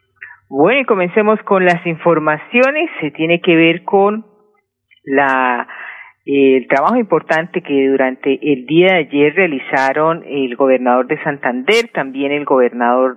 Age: 40-59